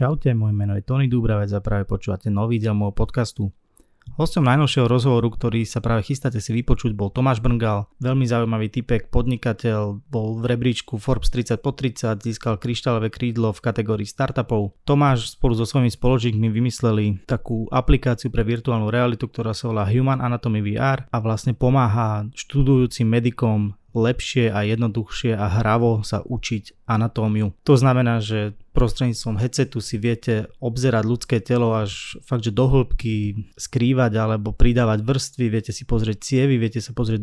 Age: 20-39